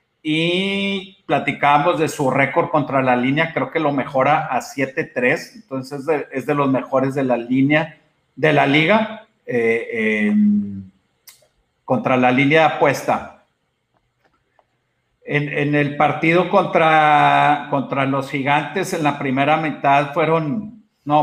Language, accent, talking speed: Spanish, Mexican, 135 wpm